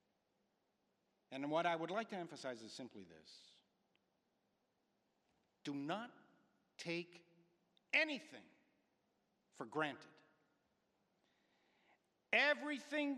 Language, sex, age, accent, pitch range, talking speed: English, male, 60-79, American, 155-210 Hz, 75 wpm